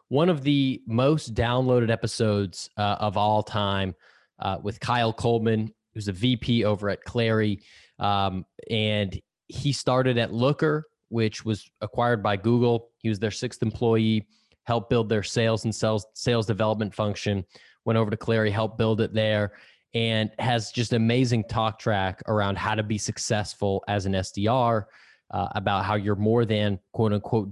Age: 20-39